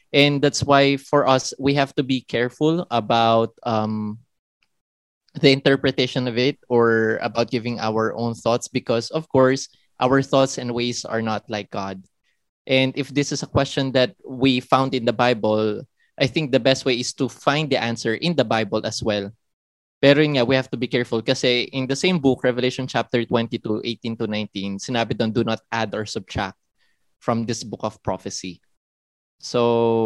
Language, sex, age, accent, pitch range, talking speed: English, male, 20-39, Filipino, 115-135 Hz, 180 wpm